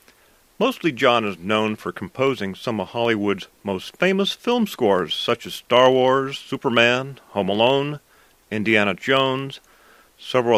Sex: male